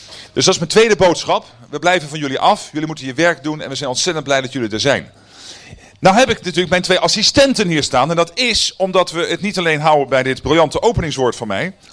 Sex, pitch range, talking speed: male, 125-170 Hz, 245 wpm